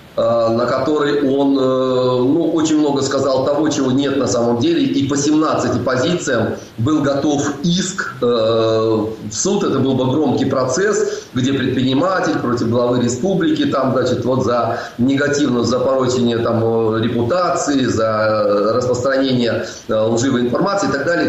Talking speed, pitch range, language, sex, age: 130 wpm, 120-155 Hz, Russian, male, 30-49